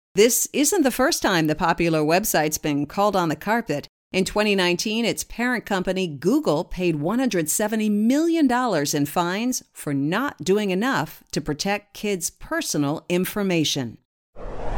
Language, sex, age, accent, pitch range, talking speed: English, female, 40-59, American, 165-240 Hz, 135 wpm